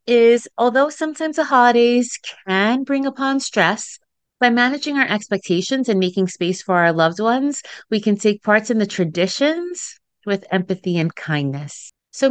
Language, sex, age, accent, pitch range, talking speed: English, female, 30-49, American, 185-235 Hz, 155 wpm